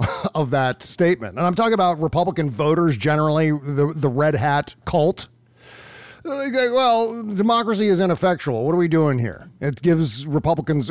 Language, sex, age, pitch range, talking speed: English, male, 40-59, 125-165 Hz, 150 wpm